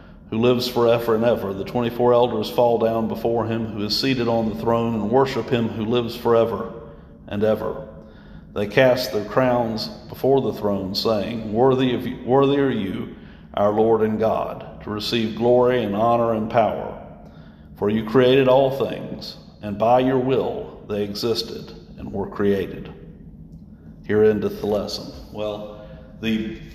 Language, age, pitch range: English, 50-69, 110-130 Hz